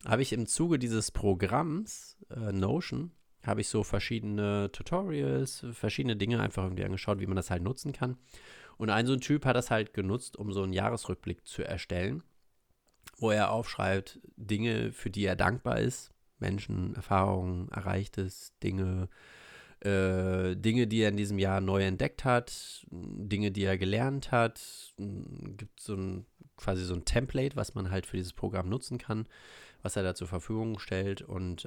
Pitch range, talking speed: 95-120 Hz, 165 wpm